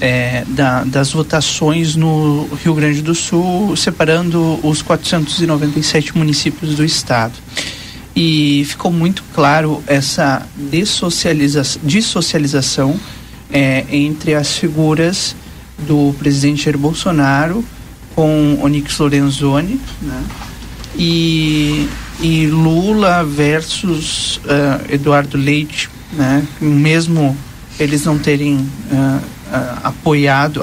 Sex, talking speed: male, 95 wpm